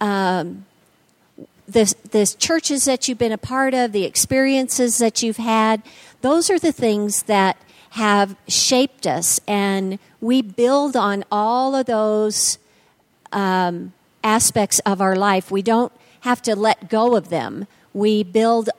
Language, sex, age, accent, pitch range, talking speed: English, female, 50-69, American, 205-245 Hz, 140 wpm